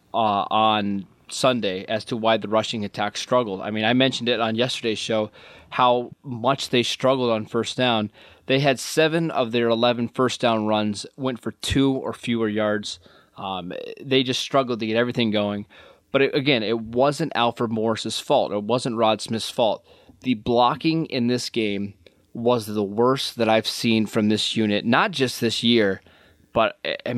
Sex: male